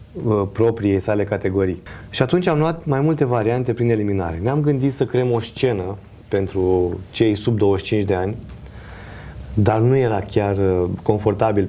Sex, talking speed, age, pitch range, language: male, 150 wpm, 30-49, 95-115 Hz, Romanian